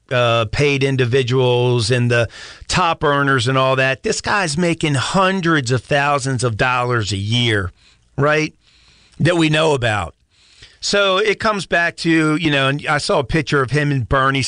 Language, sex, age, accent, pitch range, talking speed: English, male, 40-59, American, 125-150 Hz, 170 wpm